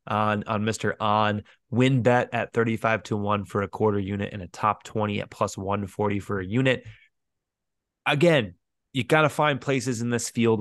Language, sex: English, male